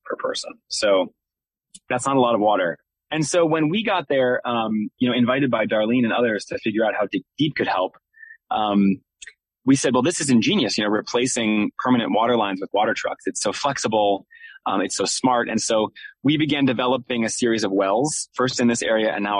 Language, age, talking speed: English, 20-39, 205 wpm